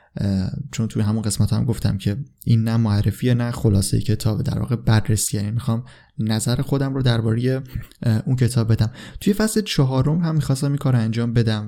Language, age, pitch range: Persian, 20-39, 105-130 Hz